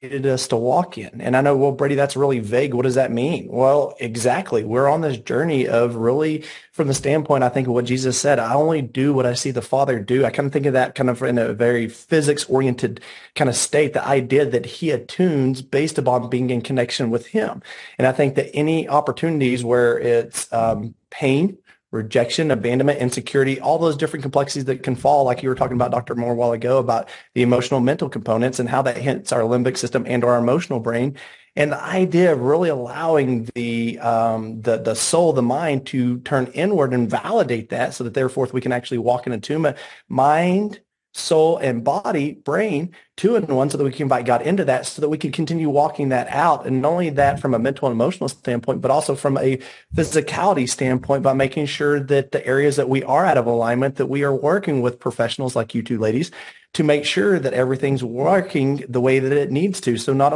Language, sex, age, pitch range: English, male, 30-49, 125-145 Hz